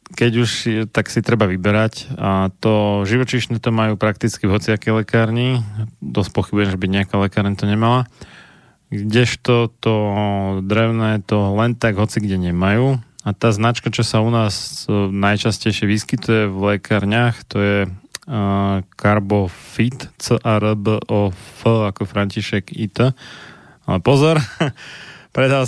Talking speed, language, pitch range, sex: 125 wpm, Slovak, 105-120 Hz, male